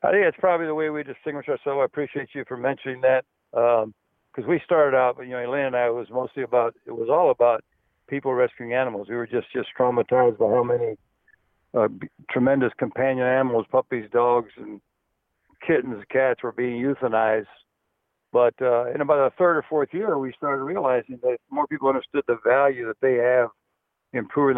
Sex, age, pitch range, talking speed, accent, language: male, 60-79, 120-150 Hz, 195 wpm, American, English